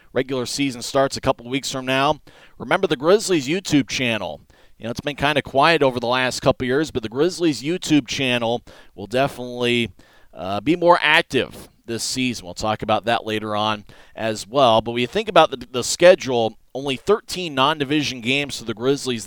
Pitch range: 115-140 Hz